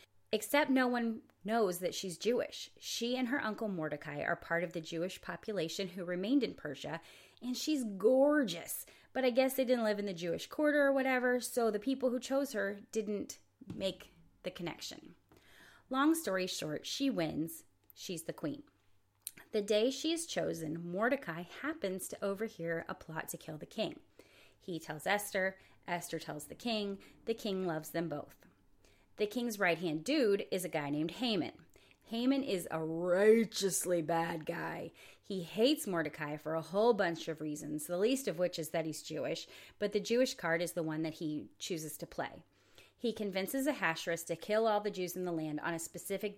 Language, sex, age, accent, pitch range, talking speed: English, female, 30-49, American, 165-230 Hz, 180 wpm